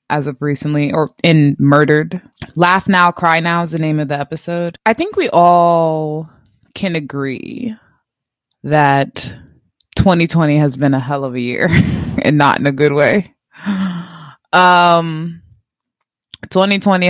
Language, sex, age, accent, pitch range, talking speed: English, female, 20-39, American, 140-170 Hz, 135 wpm